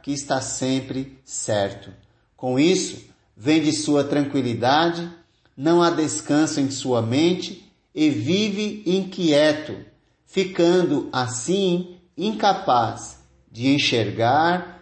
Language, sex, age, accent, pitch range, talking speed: Portuguese, male, 50-69, Brazilian, 130-175 Hz, 95 wpm